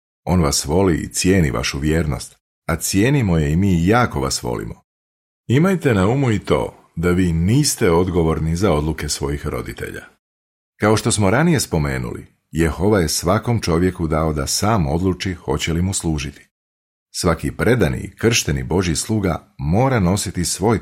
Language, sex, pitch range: Croatian, male, 75-105 Hz